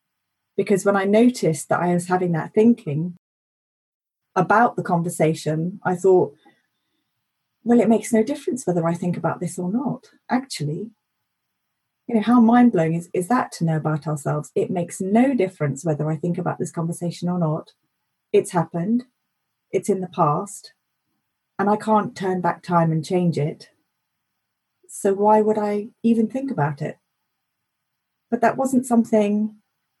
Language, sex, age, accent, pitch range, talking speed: English, female, 30-49, British, 175-230 Hz, 155 wpm